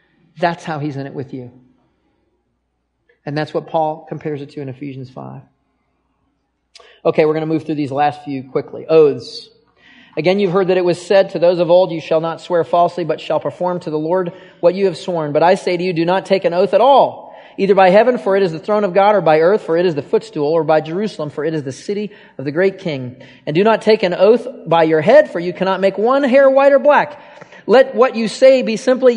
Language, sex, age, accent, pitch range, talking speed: English, male, 40-59, American, 155-200 Hz, 245 wpm